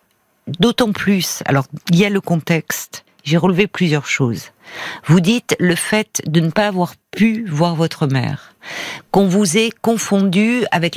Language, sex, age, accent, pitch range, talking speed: French, female, 50-69, French, 165-220 Hz, 160 wpm